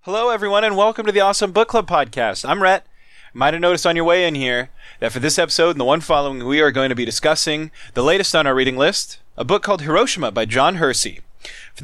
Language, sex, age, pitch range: English, male, 30-49, 125-175 Hz